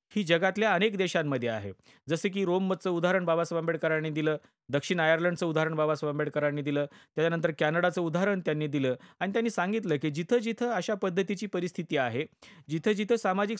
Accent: native